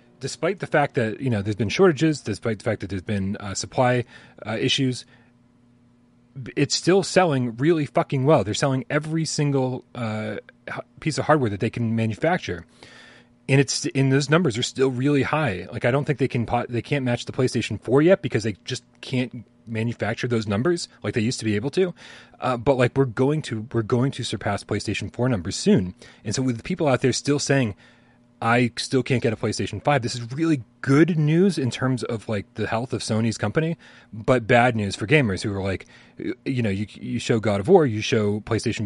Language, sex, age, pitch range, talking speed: English, male, 30-49, 110-135 Hz, 210 wpm